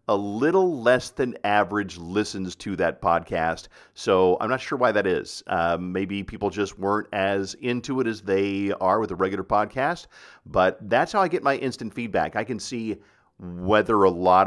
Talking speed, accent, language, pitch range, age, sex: 185 wpm, American, English, 95-120 Hz, 50-69, male